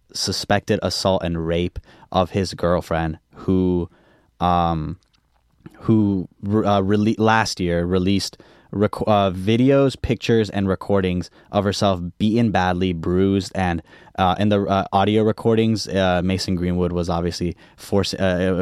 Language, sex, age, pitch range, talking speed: English, male, 10-29, 90-105 Hz, 130 wpm